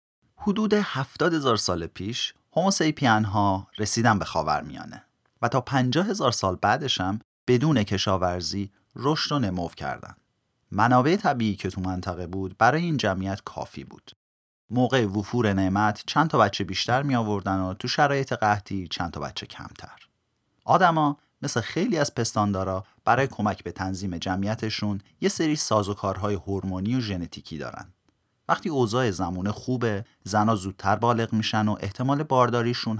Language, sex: Persian, male